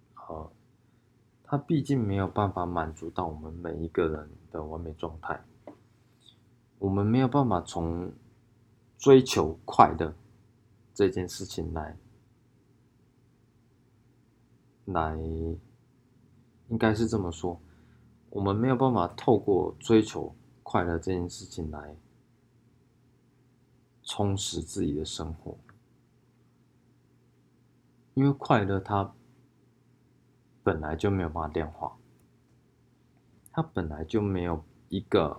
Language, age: Chinese, 20-39